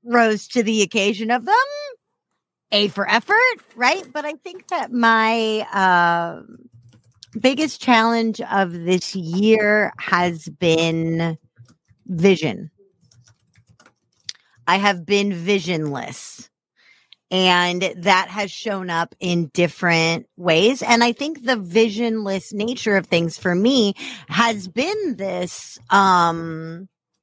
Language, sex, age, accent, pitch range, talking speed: English, female, 30-49, American, 175-225 Hz, 110 wpm